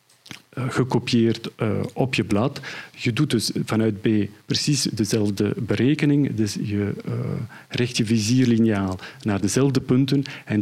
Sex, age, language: male, 50-69, Dutch